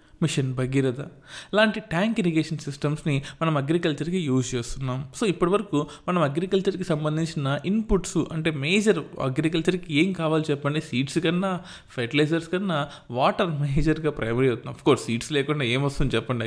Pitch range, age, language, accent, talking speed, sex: 125-165 Hz, 20-39, Telugu, native, 130 wpm, male